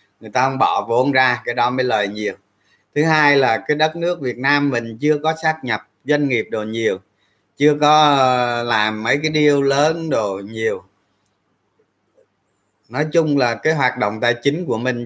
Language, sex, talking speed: Vietnamese, male, 185 wpm